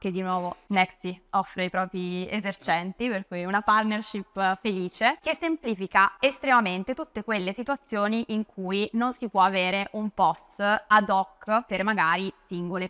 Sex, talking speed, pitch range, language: female, 150 wpm, 180-215 Hz, Italian